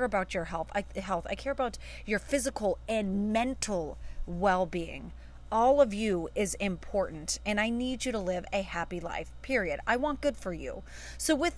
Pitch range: 180-245 Hz